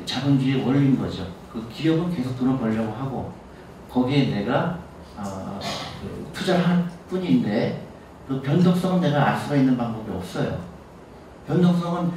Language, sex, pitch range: Korean, male, 115-150 Hz